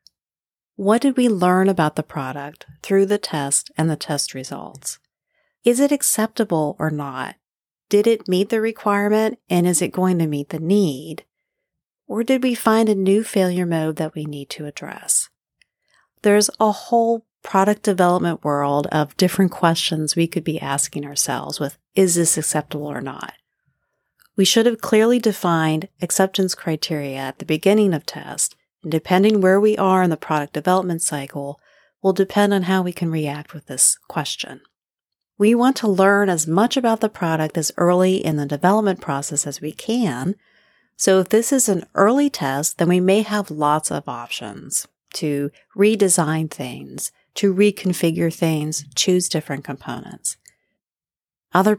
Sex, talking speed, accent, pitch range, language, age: female, 160 wpm, American, 150-205 Hz, English, 40-59